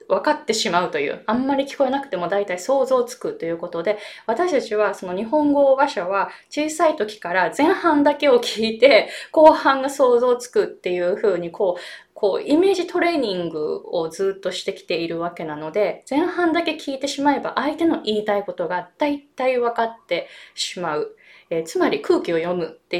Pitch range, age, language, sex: 200-310 Hz, 20-39, Japanese, female